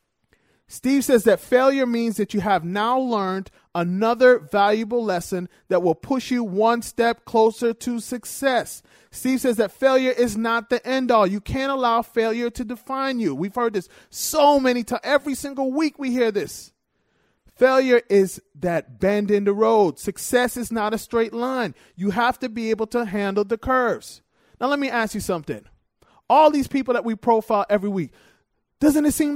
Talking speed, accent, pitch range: 180 wpm, American, 210-255 Hz